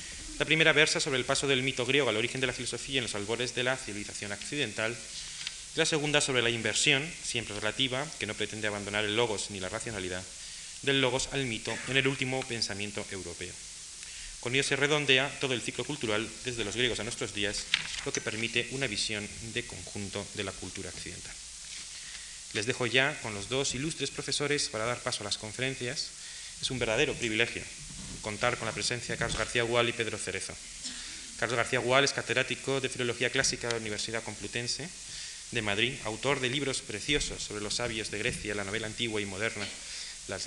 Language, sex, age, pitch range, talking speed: Spanish, male, 30-49, 105-130 Hz, 195 wpm